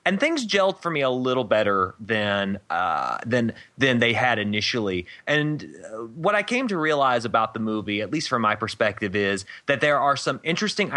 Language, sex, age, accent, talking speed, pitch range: English, male, 30-49, American, 195 wpm, 100-140 Hz